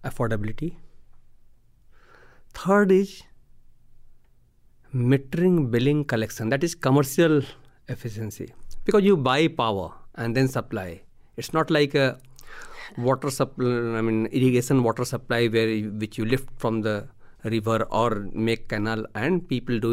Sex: male